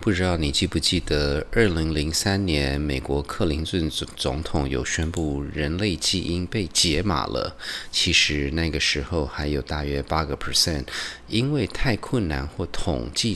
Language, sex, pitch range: Chinese, male, 70-90 Hz